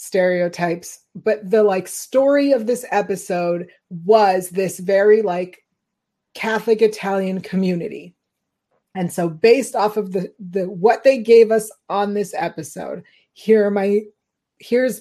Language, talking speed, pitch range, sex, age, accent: English, 130 wpm, 180-220 Hz, female, 30-49, American